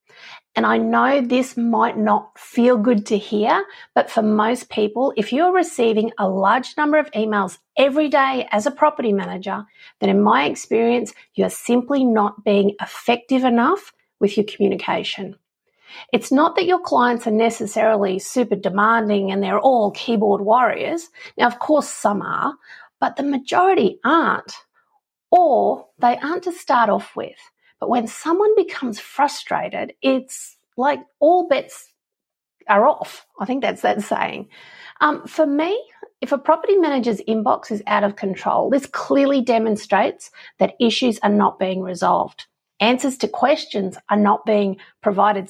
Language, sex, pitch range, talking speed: English, female, 210-300 Hz, 150 wpm